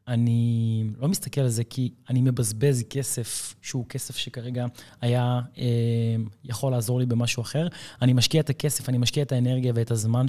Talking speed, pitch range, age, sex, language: 165 wpm, 120-140 Hz, 20-39, male, Hebrew